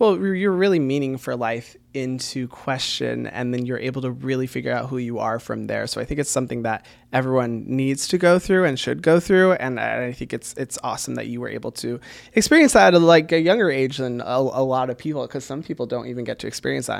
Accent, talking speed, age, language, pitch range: American, 245 wpm, 20-39, English, 125-160 Hz